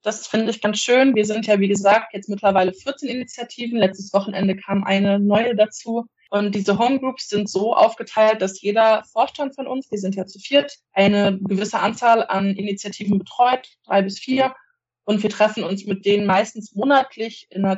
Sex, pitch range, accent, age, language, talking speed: female, 195-230 Hz, German, 20-39, German, 185 wpm